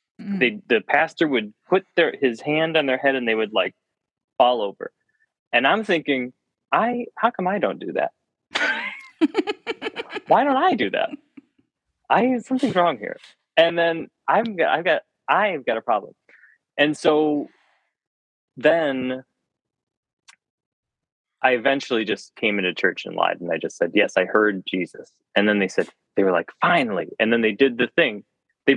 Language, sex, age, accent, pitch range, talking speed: English, male, 20-39, American, 115-175 Hz, 165 wpm